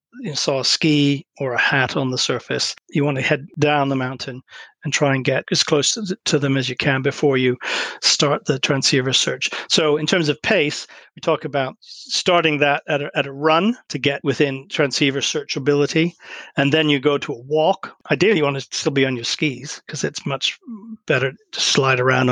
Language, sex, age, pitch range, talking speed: English, male, 40-59, 135-160 Hz, 205 wpm